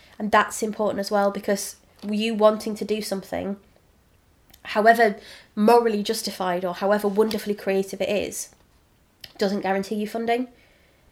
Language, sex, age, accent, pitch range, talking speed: English, female, 20-39, British, 195-215 Hz, 130 wpm